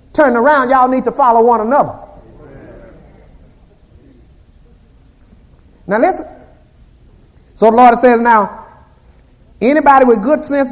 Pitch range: 185-240 Hz